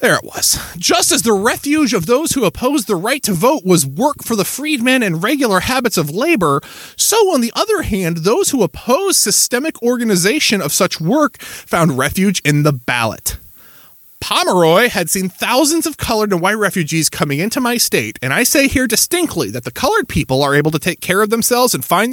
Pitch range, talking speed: 150-230 Hz, 200 wpm